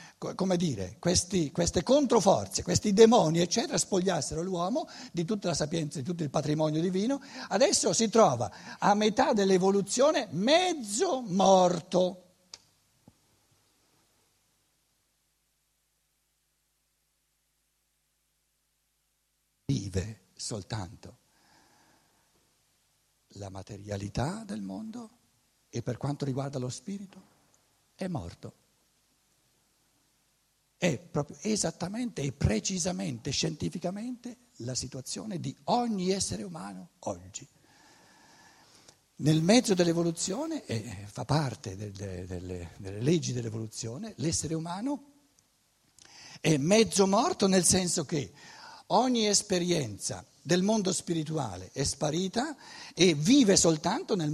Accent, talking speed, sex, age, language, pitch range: native, 90 wpm, male, 60-79, Italian, 135-210 Hz